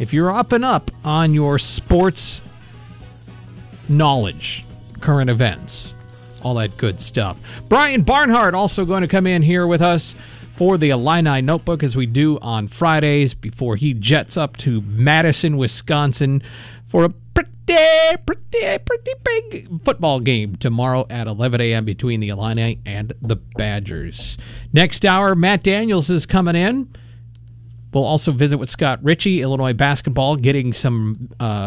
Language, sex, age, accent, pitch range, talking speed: English, male, 40-59, American, 115-160 Hz, 145 wpm